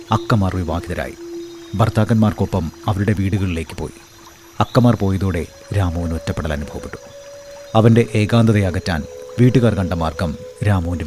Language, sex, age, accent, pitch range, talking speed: Malayalam, male, 30-49, native, 95-120 Hz, 100 wpm